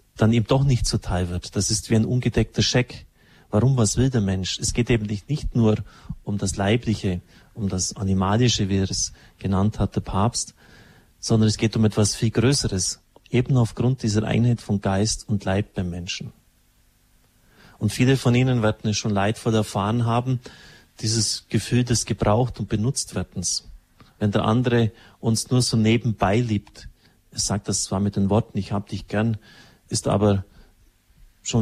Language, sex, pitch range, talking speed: German, male, 100-120 Hz, 175 wpm